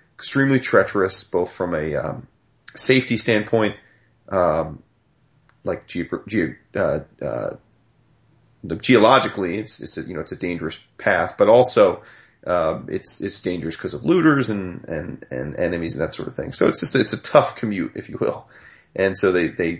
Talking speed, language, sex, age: 170 wpm, English, male, 30-49